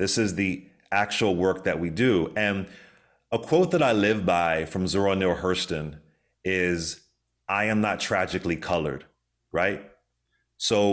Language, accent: English, American